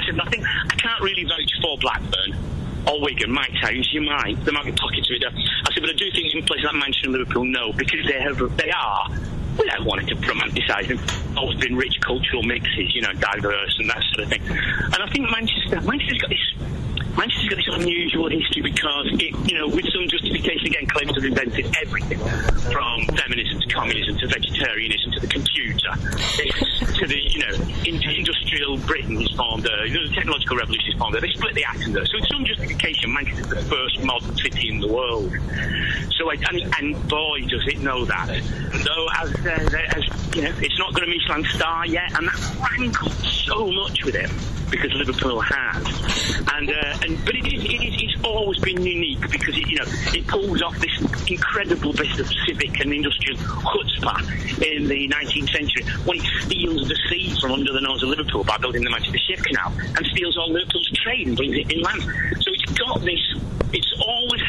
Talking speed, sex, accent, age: 205 wpm, male, British, 40-59